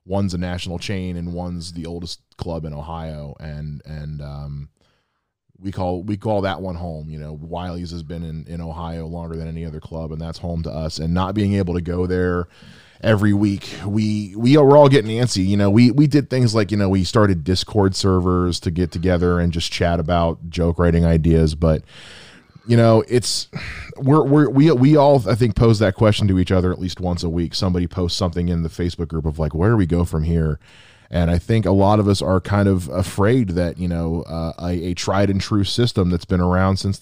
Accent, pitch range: American, 85-100 Hz